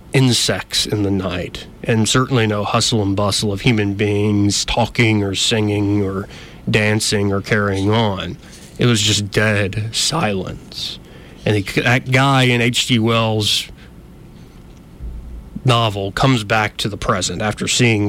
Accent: American